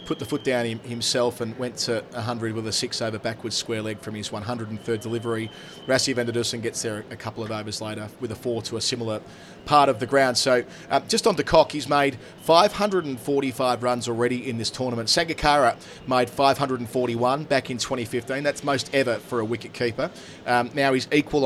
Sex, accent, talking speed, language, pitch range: male, Australian, 195 wpm, English, 120-140 Hz